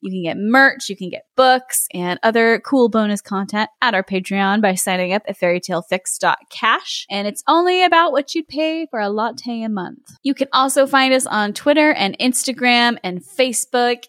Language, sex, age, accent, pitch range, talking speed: English, female, 10-29, American, 195-260 Hz, 185 wpm